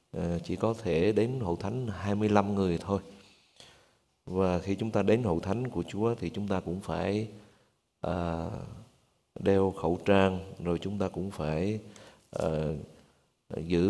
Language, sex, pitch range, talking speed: Vietnamese, male, 90-105 Hz, 140 wpm